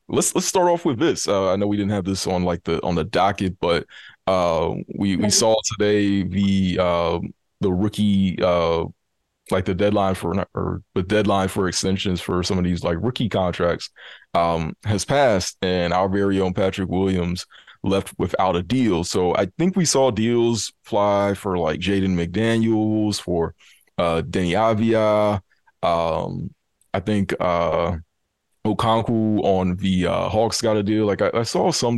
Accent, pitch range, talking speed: American, 90-110 Hz, 170 wpm